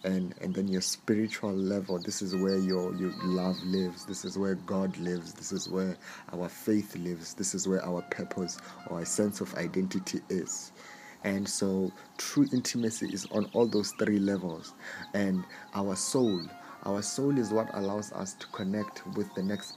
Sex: male